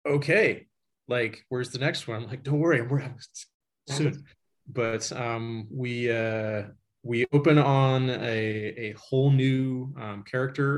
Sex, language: male, English